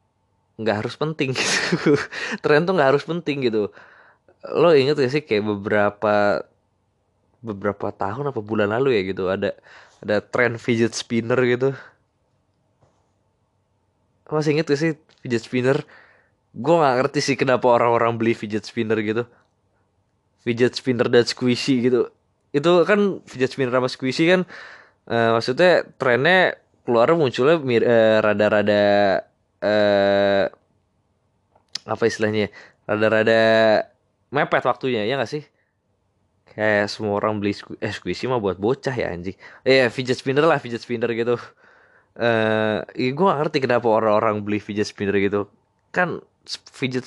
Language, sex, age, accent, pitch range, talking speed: Indonesian, male, 20-39, native, 105-125 Hz, 140 wpm